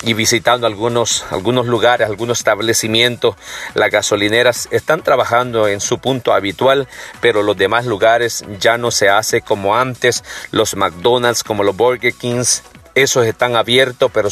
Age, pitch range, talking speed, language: 40-59, 110-125 Hz, 145 wpm, Spanish